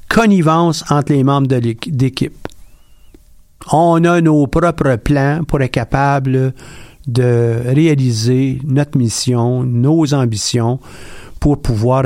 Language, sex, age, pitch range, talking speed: French, male, 50-69, 120-150 Hz, 105 wpm